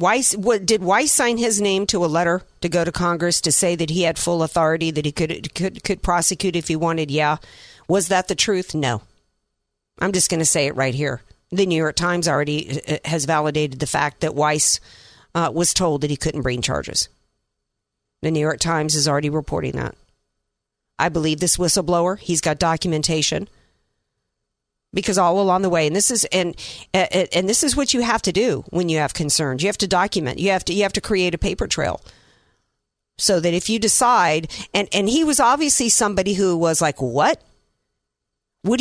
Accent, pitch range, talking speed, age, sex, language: American, 155-200 Hz, 200 wpm, 50-69, female, English